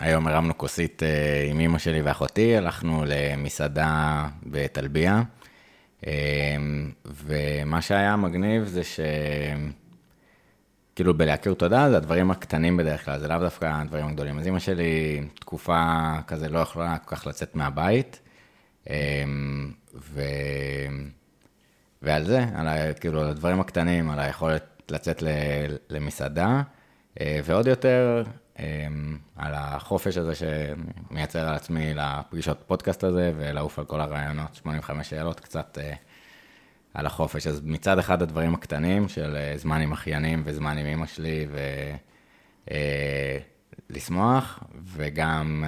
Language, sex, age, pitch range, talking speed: Hebrew, male, 30-49, 75-85 Hz, 110 wpm